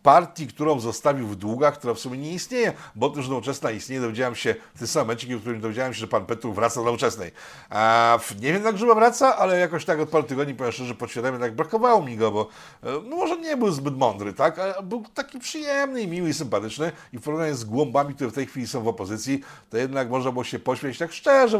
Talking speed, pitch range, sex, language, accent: 235 wpm, 115-150 Hz, male, Polish, native